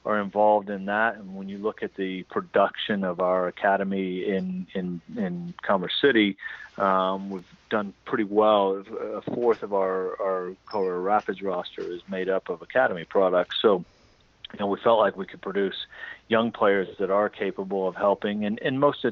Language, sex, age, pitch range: English, male, 40-59, 90-100 Hz